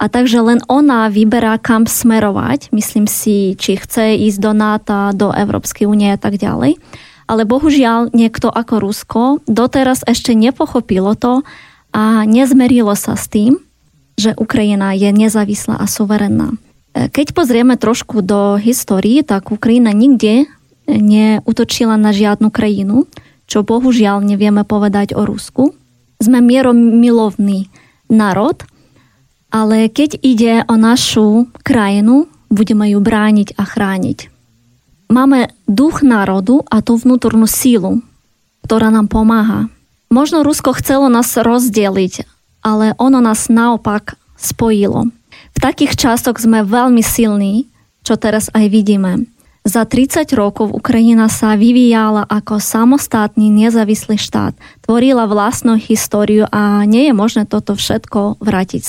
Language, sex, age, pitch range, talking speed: Slovak, female, 20-39, 210-240 Hz, 125 wpm